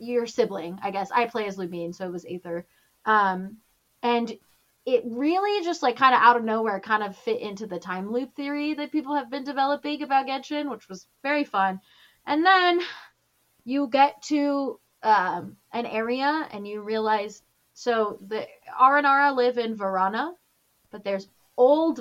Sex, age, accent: female, 20-39, American